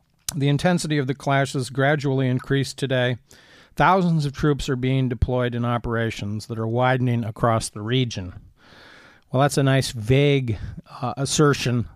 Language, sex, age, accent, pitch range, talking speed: English, male, 50-69, American, 115-135 Hz, 145 wpm